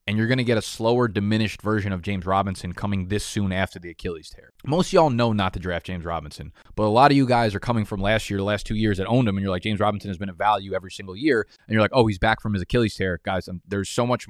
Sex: male